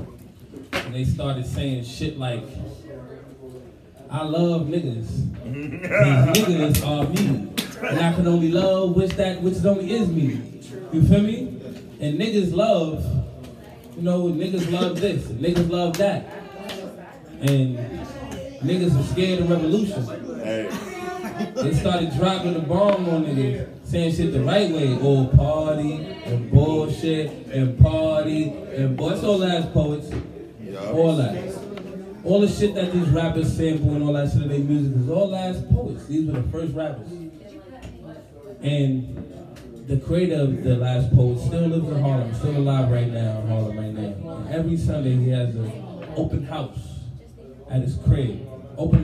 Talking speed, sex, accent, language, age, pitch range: 150 wpm, male, American, English, 20-39, 130-170 Hz